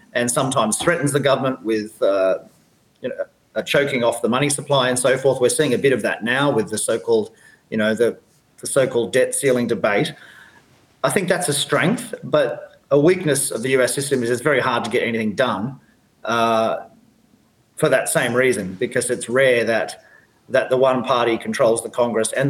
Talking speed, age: 195 wpm, 40-59